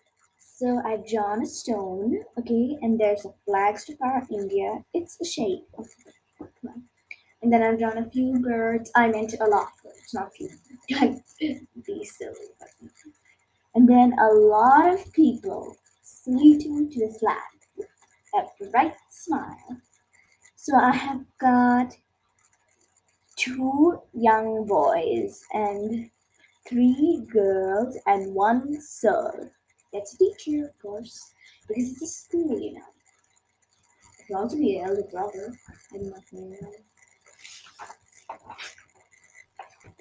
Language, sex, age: English, female, 20-39